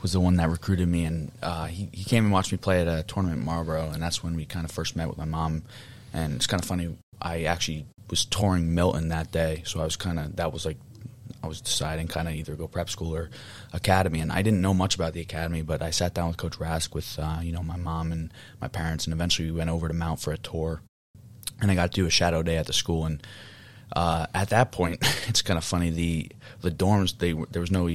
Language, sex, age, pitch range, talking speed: English, male, 20-39, 80-95 Hz, 260 wpm